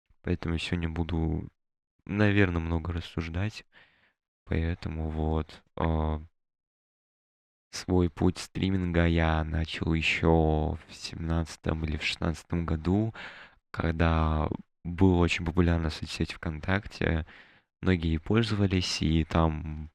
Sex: male